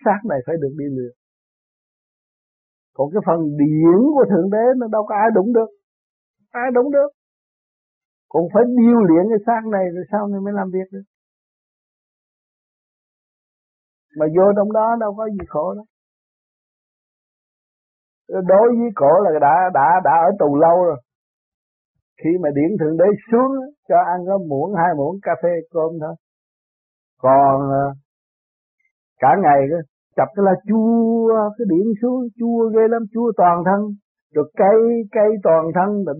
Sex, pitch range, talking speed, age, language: male, 150-220 Hz, 155 wpm, 50-69, Vietnamese